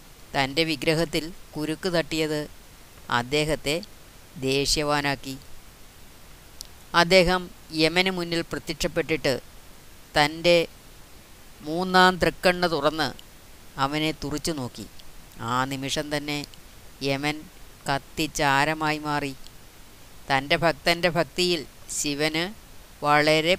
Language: Malayalam